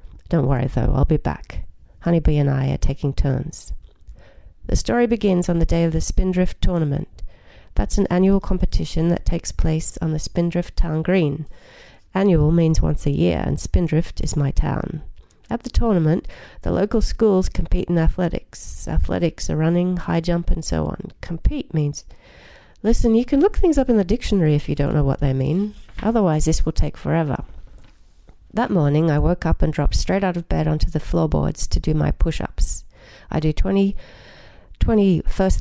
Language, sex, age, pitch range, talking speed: English, female, 40-59, 145-180 Hz, 180 wpm